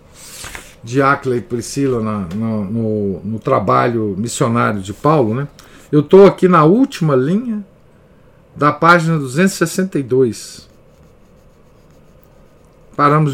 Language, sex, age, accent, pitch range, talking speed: Portuguese, male, 50-69, Brazilian, 120-155 Hz, 95 wpm